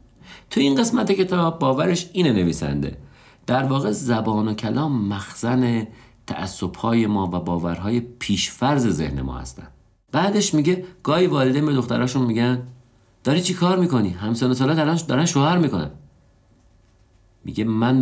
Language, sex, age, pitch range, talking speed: Persian, male, 50-69, 90-125 Hz, 135 wpm